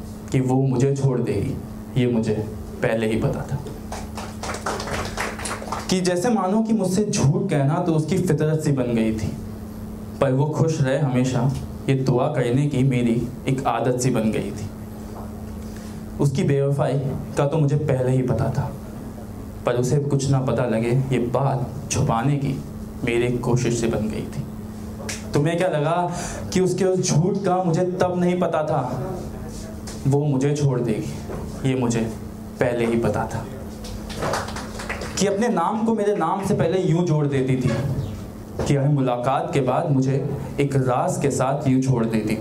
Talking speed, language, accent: 155 wpm, Hindi, native